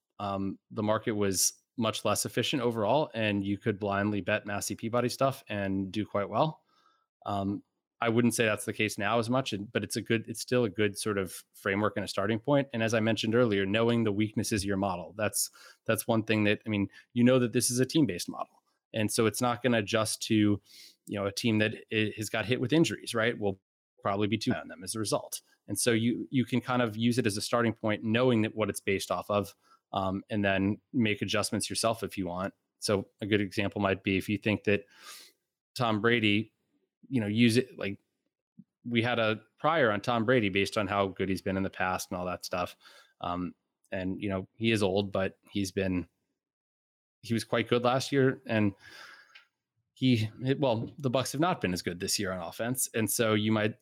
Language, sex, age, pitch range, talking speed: English, male, 20-39, 100-120 Hz, 220 wpm